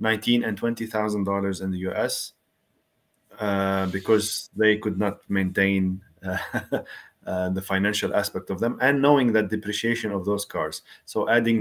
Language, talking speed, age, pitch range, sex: English, 145 wpm, 30-49, 100-120 Hz, male